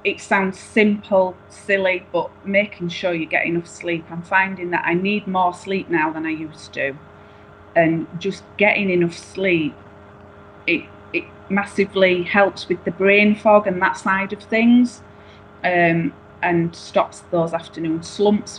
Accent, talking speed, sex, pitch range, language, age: British, 150 wpm, female, 160-195 Hz, English, 30-49